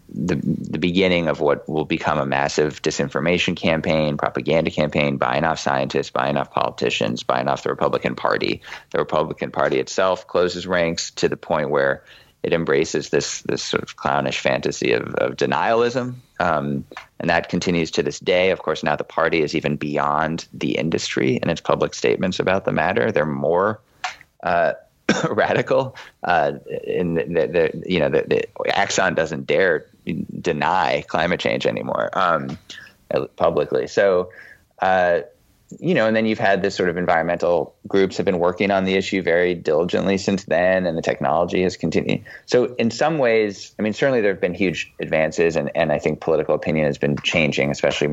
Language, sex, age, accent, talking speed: English, male, 30-49, American, 175 wpm